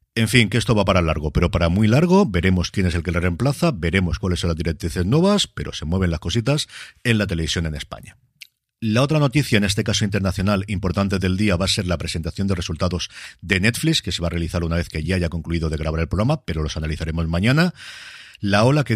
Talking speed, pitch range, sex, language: 235 wpm, 90-110 Hz, male, Spanish